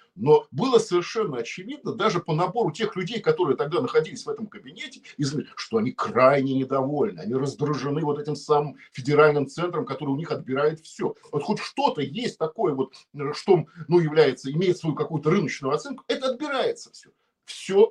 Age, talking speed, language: 50-69, 170 wpm, Russian